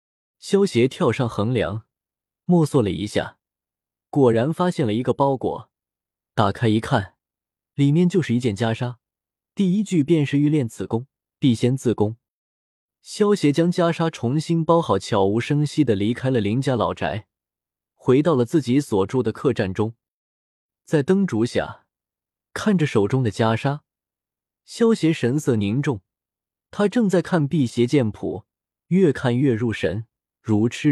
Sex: male